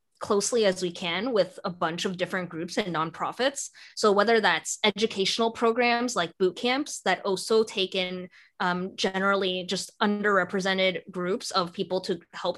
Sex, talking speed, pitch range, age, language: female, 155 wpm, 180-225 Hz, 20-39, English